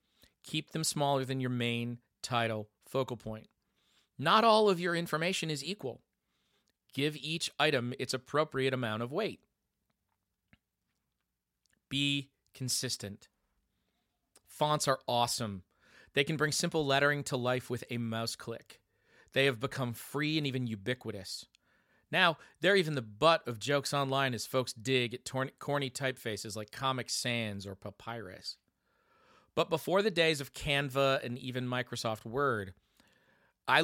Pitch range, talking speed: 120-145 Hz, 135 wpm